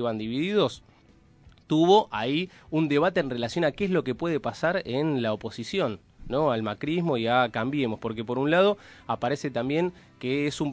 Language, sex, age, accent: Spanish, male, 30-49, Argentinian